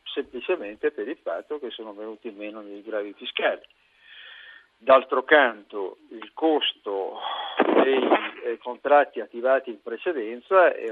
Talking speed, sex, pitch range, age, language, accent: 120 wpm, male, 110-145 Hz, 50-69, Italian, native